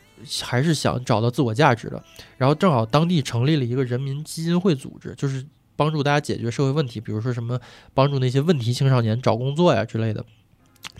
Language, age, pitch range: Chinese, 20-39, 120-150 Hz